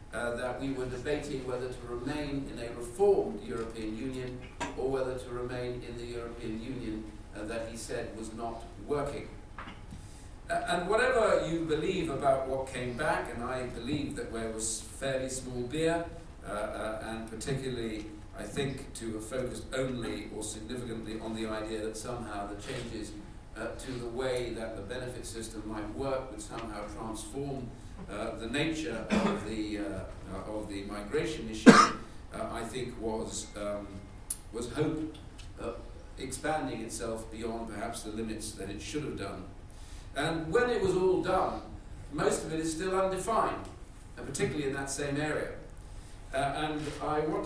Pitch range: 110-135 Hz